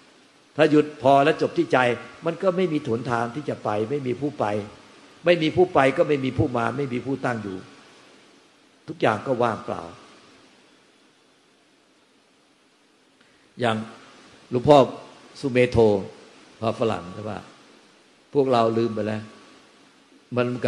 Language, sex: Thai, male